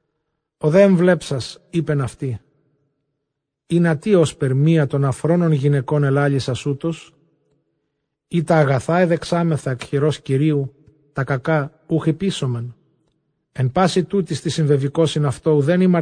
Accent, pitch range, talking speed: Greek, 135-155 Hz, 125 wpm